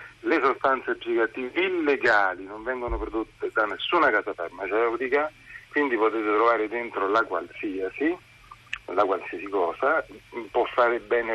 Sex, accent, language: male, native, Italian